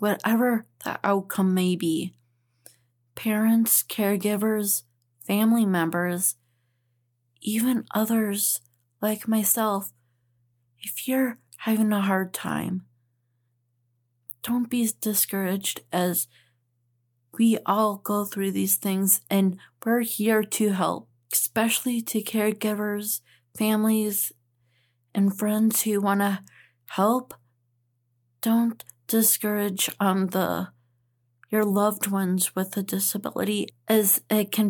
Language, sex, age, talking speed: English, female, 30-49, 100 wpm